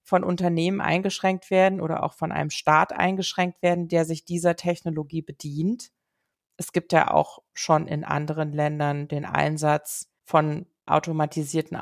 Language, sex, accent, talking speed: German, female, German, 140 wpm